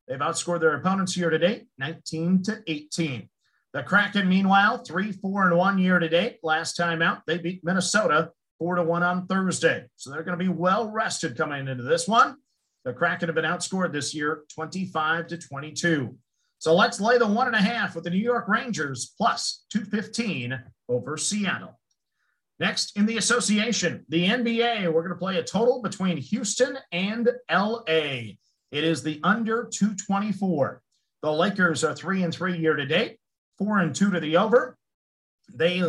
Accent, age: American, 50-69